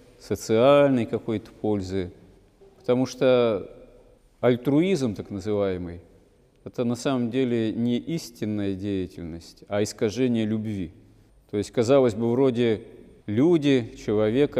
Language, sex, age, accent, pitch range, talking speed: Russian, male, 40-59, native, 105-130 Hz, 105 wpm